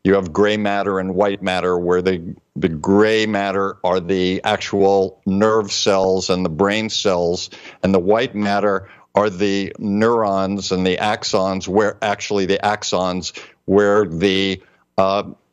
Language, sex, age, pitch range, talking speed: English, male, 50-69, 95-110 Hz, 145 wpm